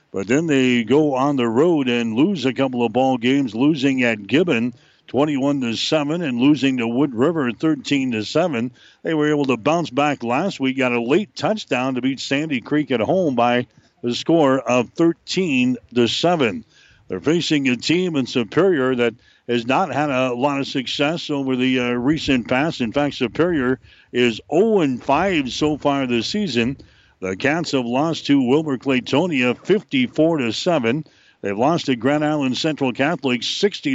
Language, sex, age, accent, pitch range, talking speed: English, male, 60-79, American, 125-155 Hz, 165 wpm